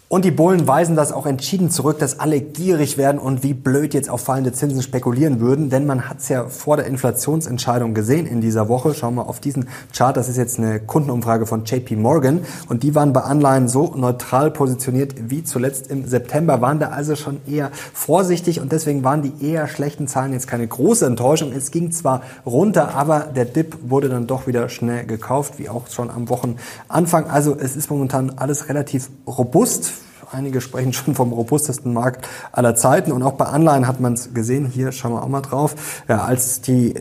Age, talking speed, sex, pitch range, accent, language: 30-49, 205 wpm, male, 120-145 Hz, German, German